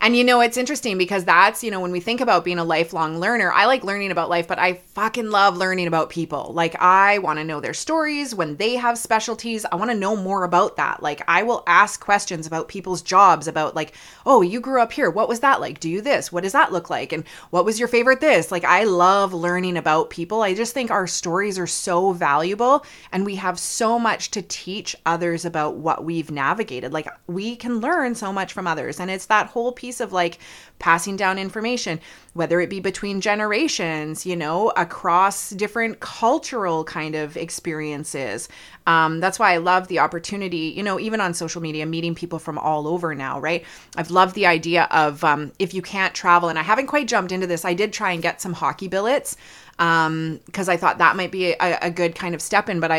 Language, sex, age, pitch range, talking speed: English, female, 30-49, 165-210 Hz, 225 wpm